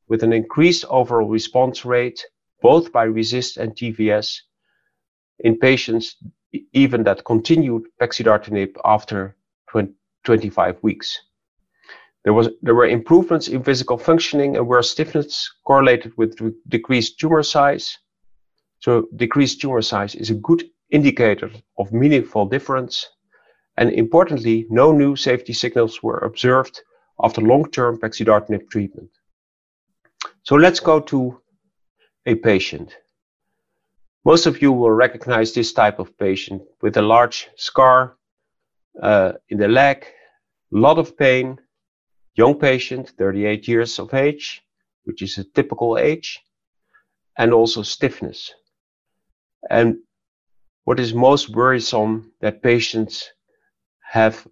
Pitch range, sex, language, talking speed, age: 110-135 Hz, male, English, 120 wpm, 50-69